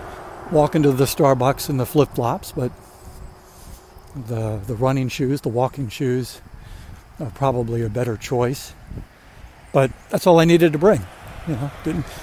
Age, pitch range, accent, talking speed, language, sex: 60-79, 115-145 Hz, American, 145 wpm, English, male